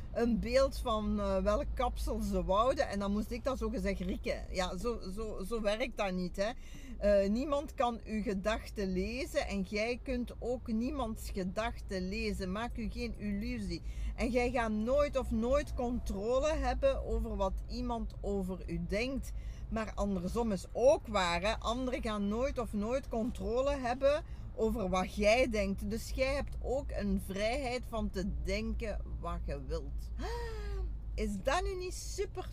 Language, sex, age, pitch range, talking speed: Dutch, female, 50-69, 200-245 Hz, 160 wpm